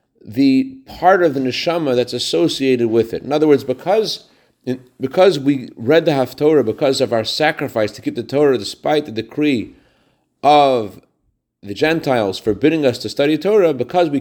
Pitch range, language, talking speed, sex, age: 135-175 Hz, English, 165 wpm, male, 40-59